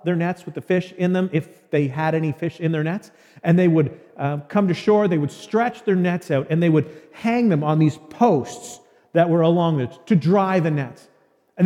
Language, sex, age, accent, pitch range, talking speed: English, male, 40-59, American, 150-200 Hz, 230 wpm